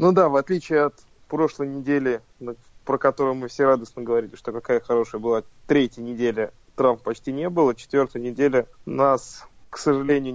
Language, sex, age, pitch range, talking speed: Russian, male, 20-39, 120-140 Hz, 160 wpm